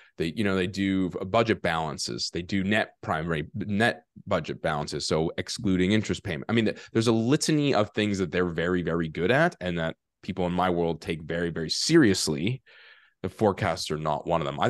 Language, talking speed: English, 200 wpm